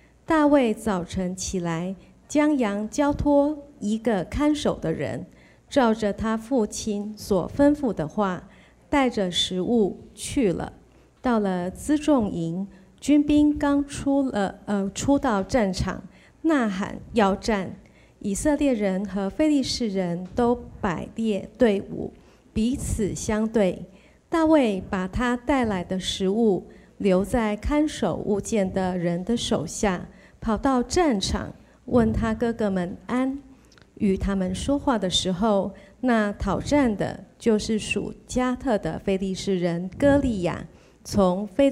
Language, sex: Chinese, female